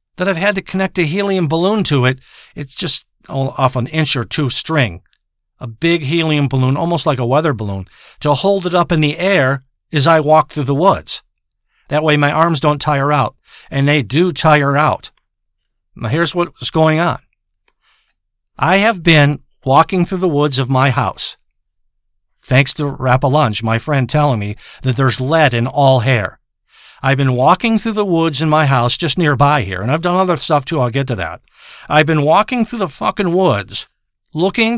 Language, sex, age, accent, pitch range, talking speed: English, male, 50-69, American, 135-175 Hz, 190 wpm